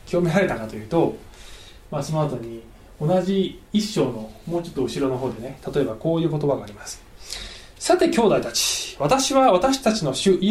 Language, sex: Japanese, male